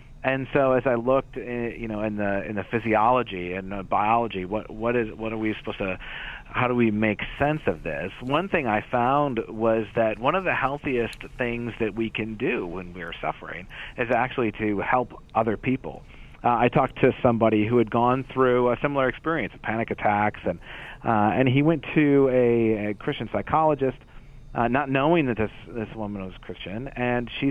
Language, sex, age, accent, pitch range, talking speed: English, male, 40-59, American, 110-130 Hz, 195 wpm